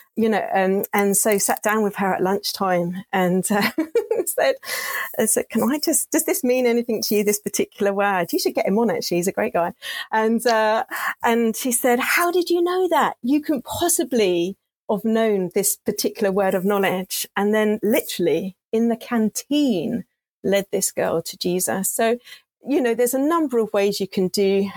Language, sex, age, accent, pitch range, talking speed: English, female, 40-59, British, 185-235 Hz, 190 wpm